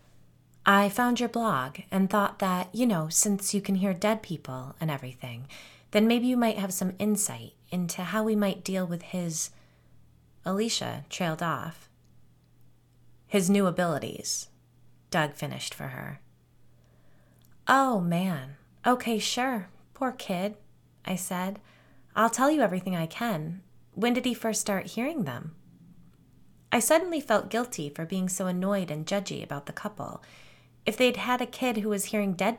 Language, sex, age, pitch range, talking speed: English, female, 20-39, 150-215 Hz, 155 wpm